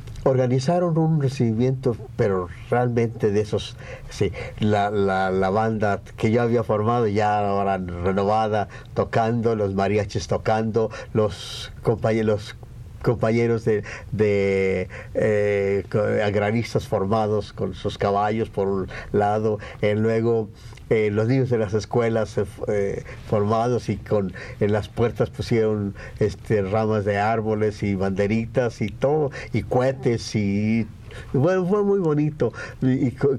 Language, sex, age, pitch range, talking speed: Spanish, male, 50-69, 105-125 Hz, 130 wpm